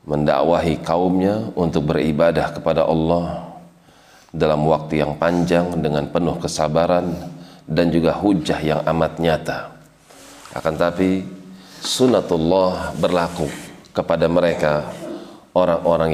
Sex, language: male, Indonesian